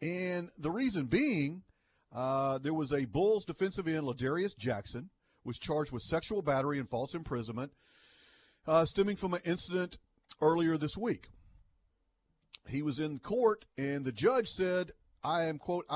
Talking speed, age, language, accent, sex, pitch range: 150 wpm, 40-59, English, American, male, 125-180 Hz